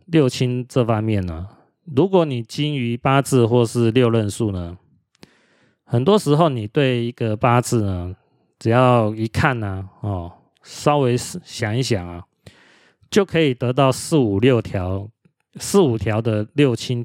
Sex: male